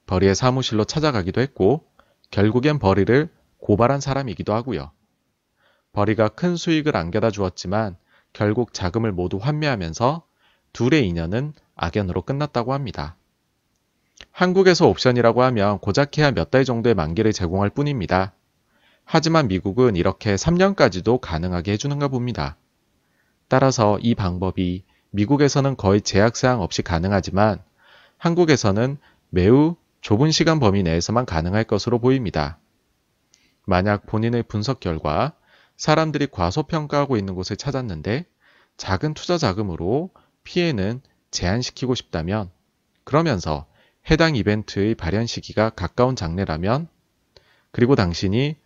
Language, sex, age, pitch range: Korean, male, 30-49, 95-140 Hz